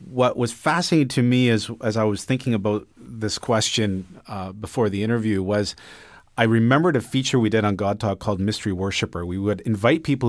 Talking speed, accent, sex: 200 wpm, American, male